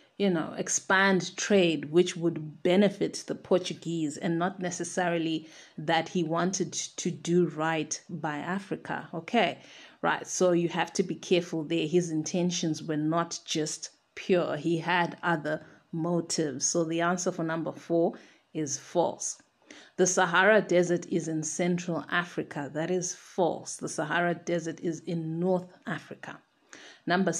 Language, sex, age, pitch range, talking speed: English, female, 30-49, 165-185 Hz, 140 wpm